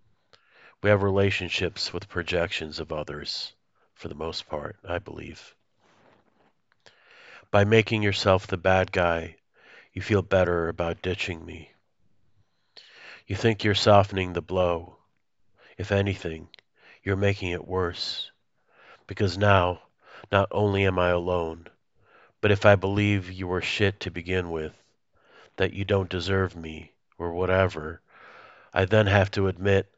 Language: English